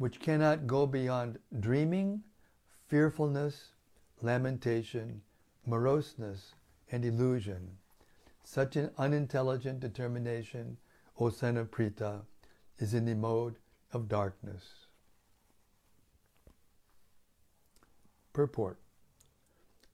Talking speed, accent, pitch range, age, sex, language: 70 wpm, American, 110-140 Hz, 60-79, male, English